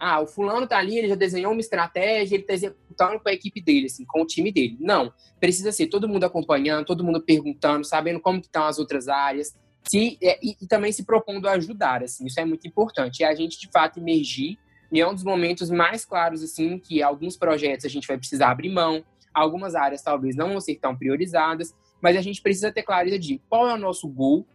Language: Portuguese